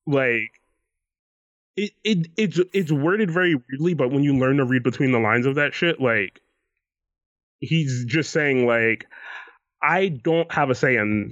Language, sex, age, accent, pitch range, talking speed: English, male, 20-39, American, 130-170 Hz, 165 wpm